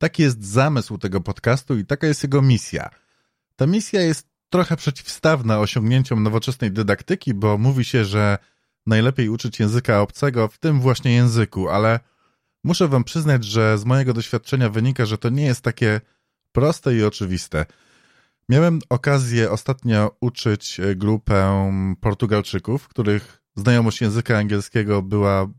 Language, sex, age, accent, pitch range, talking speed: Polish, male, 20-39, native, 105-130 Hz, 135 wpm